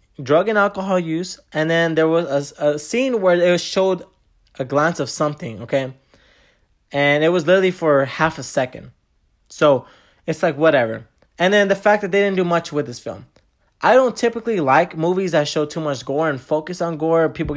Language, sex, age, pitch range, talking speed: English, male, 20-39, 140-185 Hz, 200 wpm